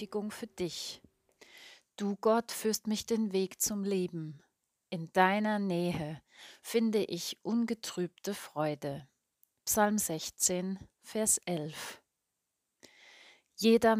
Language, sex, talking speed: German, female, 95 wpm